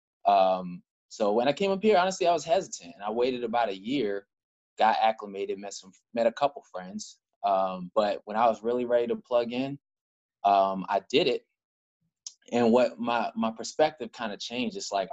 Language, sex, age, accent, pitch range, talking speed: English, male, 20-39, American, 100-125 Hz, 190 wpm